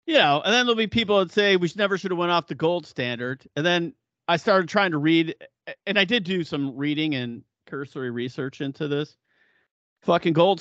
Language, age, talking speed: English, 40-59, 215 wpm